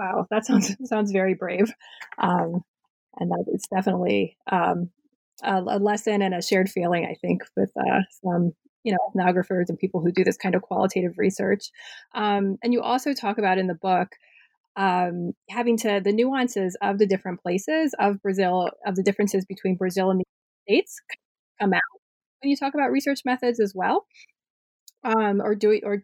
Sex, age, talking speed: female, 20-39, 180 wpm